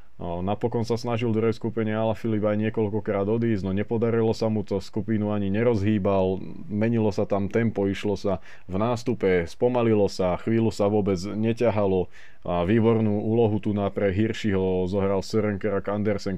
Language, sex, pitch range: Slovak, male, 95-110 Hz